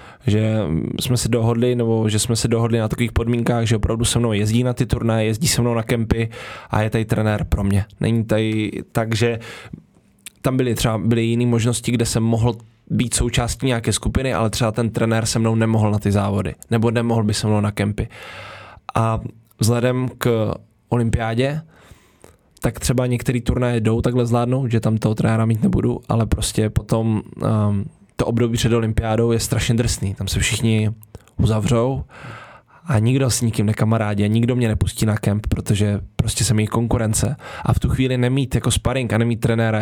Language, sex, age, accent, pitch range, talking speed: Czech, male, 20-39, native, 110-120 Hz, 180 wpm